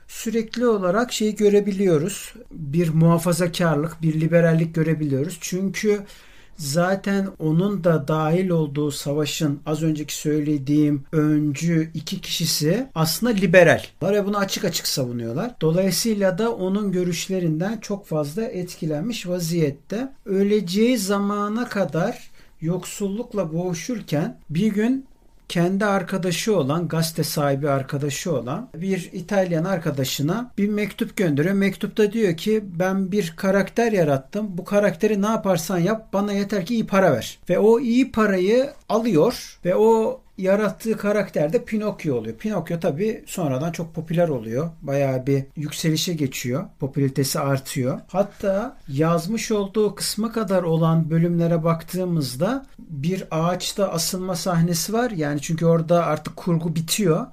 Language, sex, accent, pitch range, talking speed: Turkish, male, native, 160-205 Hz, 125 wpm